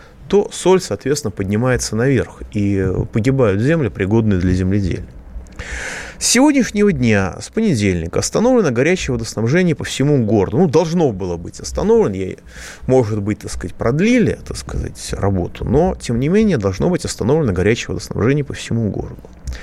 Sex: male